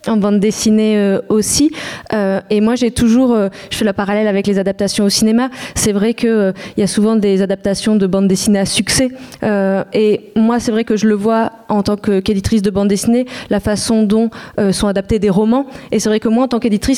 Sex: female